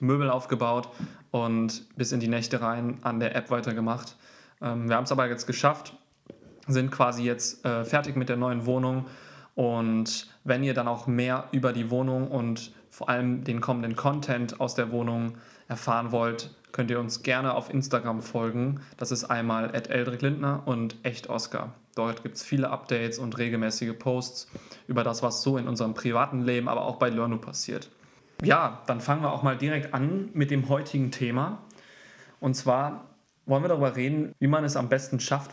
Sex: male